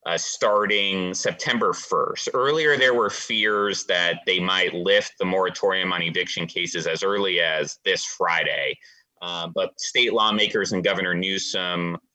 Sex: male